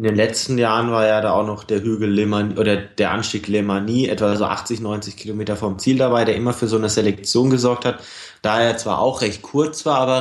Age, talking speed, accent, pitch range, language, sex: 20-39, 235 wpm, German, 105-125 Hz, German, male